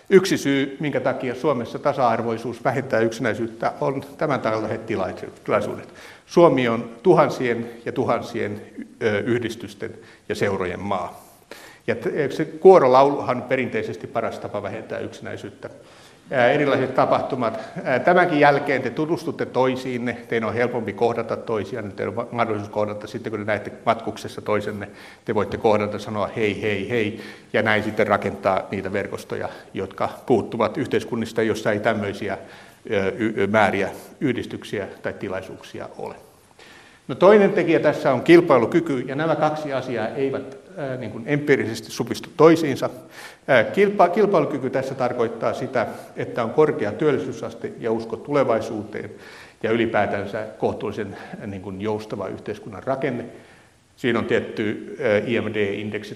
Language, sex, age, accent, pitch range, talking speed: Finnish, male, 60-79, native, 110-140 Hz, 125 wpm